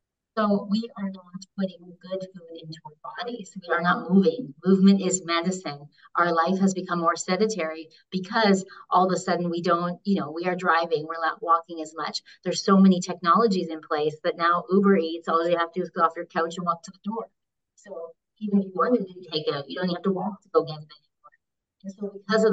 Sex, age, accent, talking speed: female, 30-49, American, 230 wpm